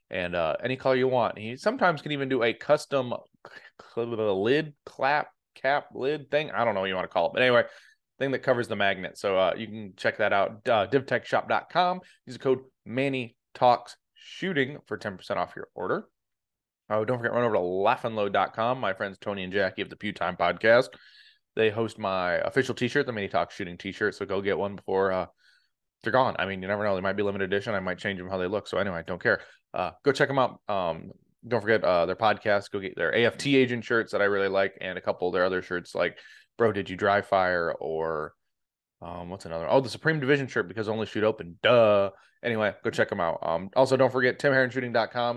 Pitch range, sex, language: 95-130 Hz, male, English